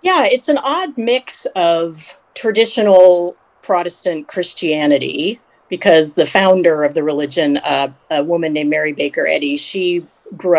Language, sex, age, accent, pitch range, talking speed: English, female, 40-59, American, 155-205 Hz, 135 wpm